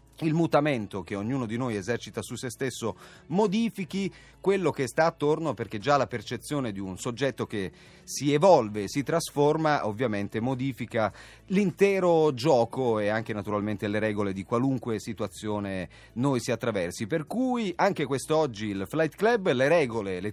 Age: 30-49